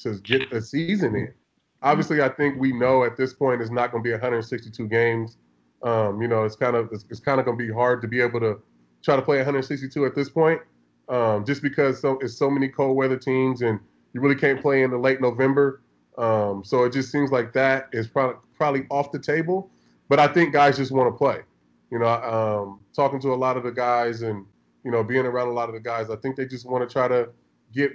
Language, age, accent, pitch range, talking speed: English, 20-39, American, 115-135 Hz, 245 wpm